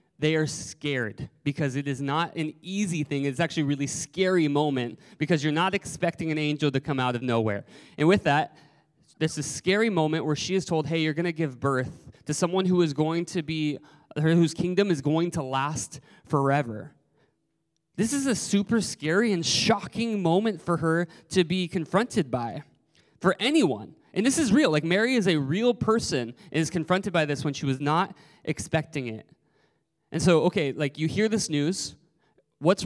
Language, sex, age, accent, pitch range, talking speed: English, male, 20-39, American, 145-180 Hz, 190 wpm